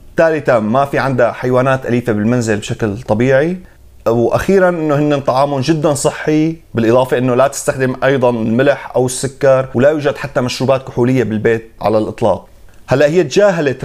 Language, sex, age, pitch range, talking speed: Arabic, male, 30-49, 120-145 Hz, 145 wpm